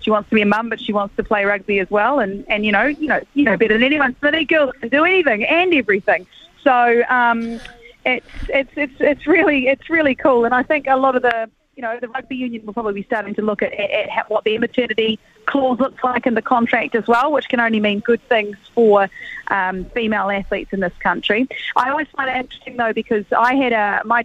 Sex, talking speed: female, 245 wpm